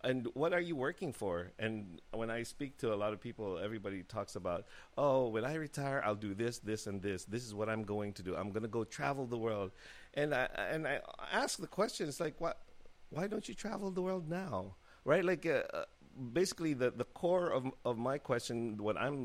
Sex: male